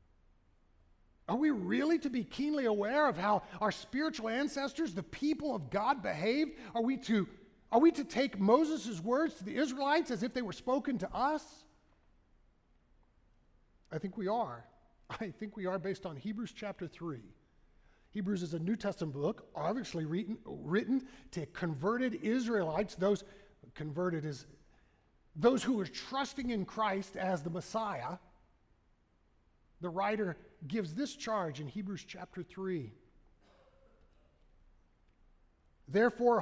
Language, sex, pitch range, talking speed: English, male, 155-245 Hz, 135 wpm